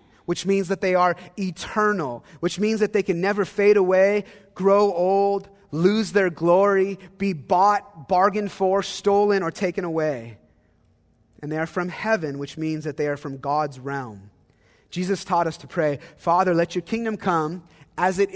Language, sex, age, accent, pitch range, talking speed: English, male, 30-49, American, 150-205 Hz, 170 wpm